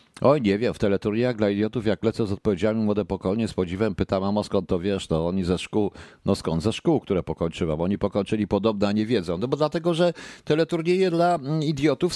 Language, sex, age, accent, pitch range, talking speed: Polish, male, 50-69, native, 95-130 Hz, 220 wpm